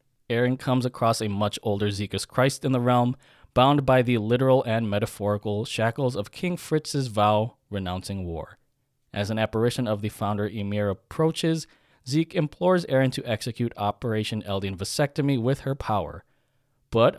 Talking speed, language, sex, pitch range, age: 155 wpm, English, male, 105-140 Hz, 20-39